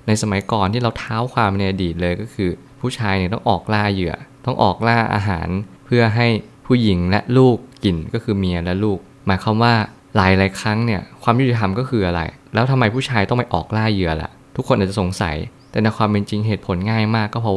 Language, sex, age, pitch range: Thai, male, 20-39, 95-115 Hz